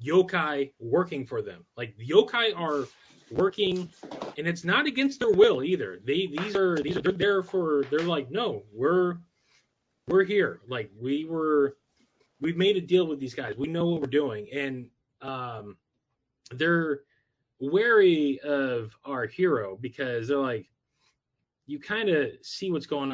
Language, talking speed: English, 155 wpm